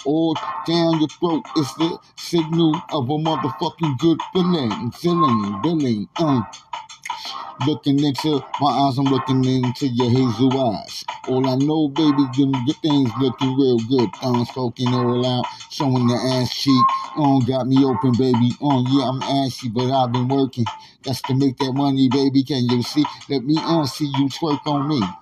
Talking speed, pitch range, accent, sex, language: 180 wpm, 130-155 Hz, American, male, English